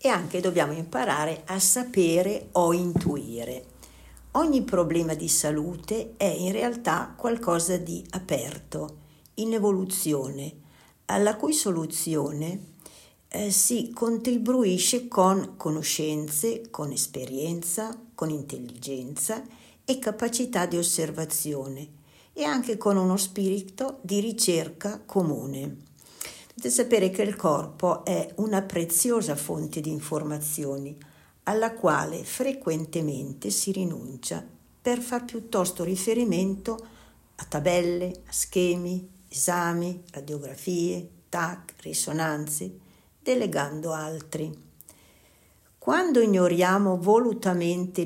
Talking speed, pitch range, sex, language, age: 95 wpm, 150-210 Hz, female, Italian, 60-79